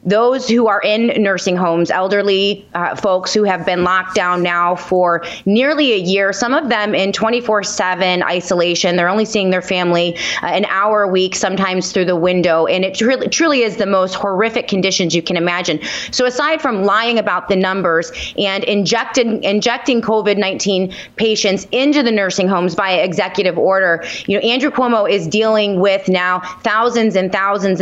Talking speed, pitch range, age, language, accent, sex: 175 wpm, 185-225 Hz, 30-49, English, American, female